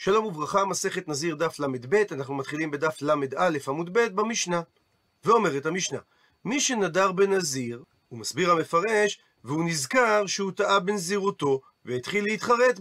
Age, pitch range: 40-59, 155-210 Hz